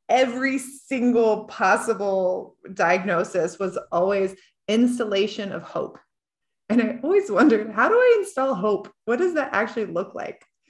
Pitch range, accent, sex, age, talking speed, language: 185-260 Hz, American, female, 20-39, 135 wpm, English